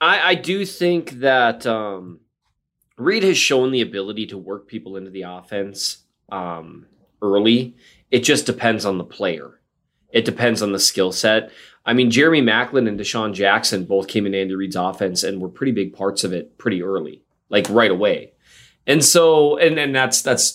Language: English